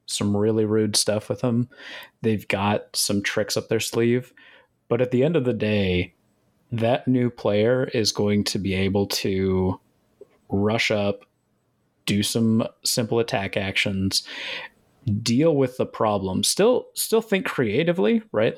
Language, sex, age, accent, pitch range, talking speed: English, male, 30-49, American, 100-120 Hz, 145 wpm